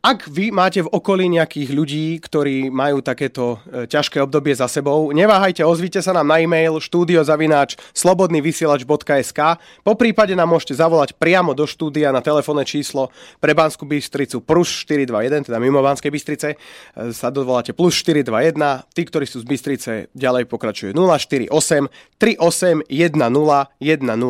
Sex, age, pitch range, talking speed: male, 30-49, 125-165 Hz, 140 wpm